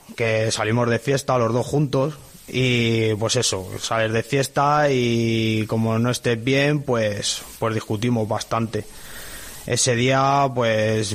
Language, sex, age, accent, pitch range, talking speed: Spanish, male, 20-39, Spanish, 110-130 Hz, 135 wpm